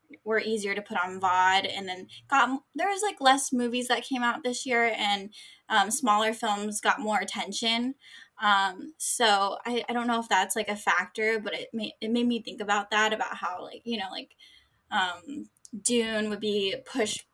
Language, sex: English, female